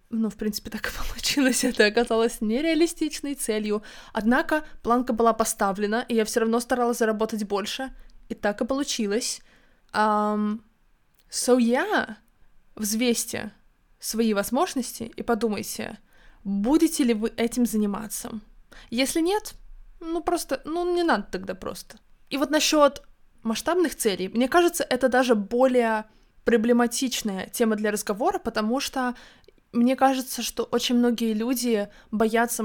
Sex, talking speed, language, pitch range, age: female, 130 wpm, Russian, 215-255 Hz, 20-39